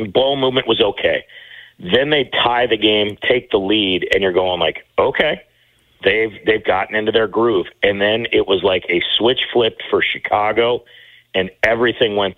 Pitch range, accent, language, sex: 100-135 Hz, American, English, male